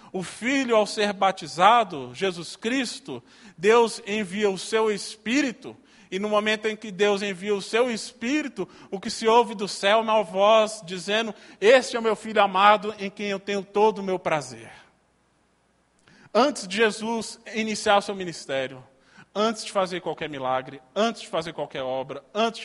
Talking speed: 165 wpm